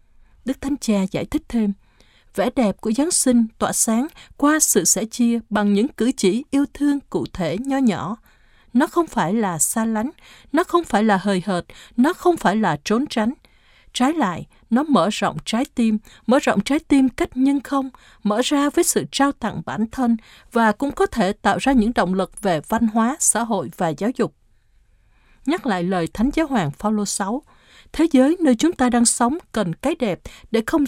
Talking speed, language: 205 wpm, Vietnamese